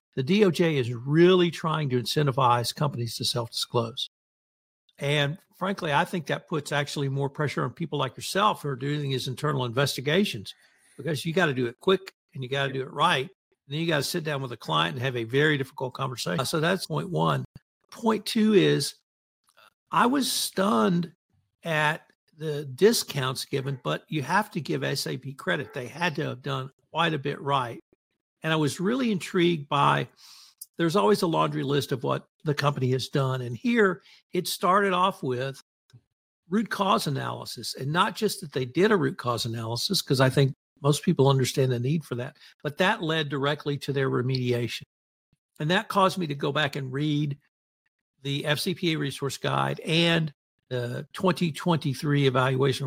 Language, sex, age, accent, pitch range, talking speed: English, male, 60-79, American, 135-175 Hz, 180 wpm